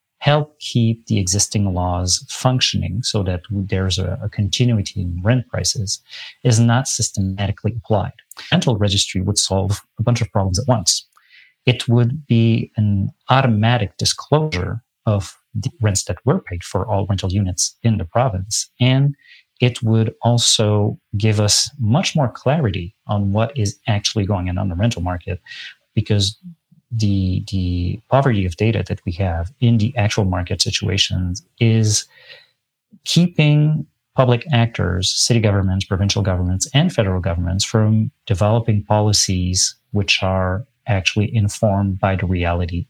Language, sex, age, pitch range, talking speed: English, male, 30-49, 95-120 Hz, 145 wpm